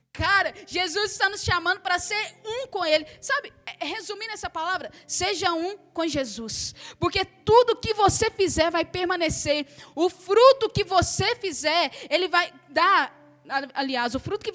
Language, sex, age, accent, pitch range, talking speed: Portuguese, female, 10-29, Brazilian, 340-430 Hz, 155 wpm